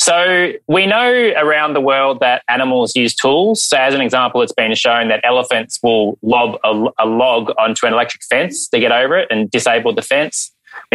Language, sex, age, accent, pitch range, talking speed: English, male, 20-39, Australian, 125-195 Hz, 205 wpm